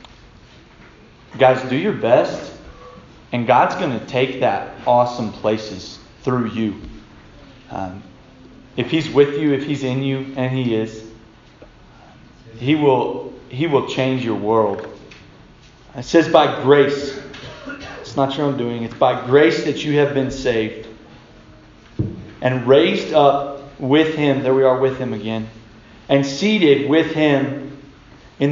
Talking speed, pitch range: 140 wpm, 115-140 Hz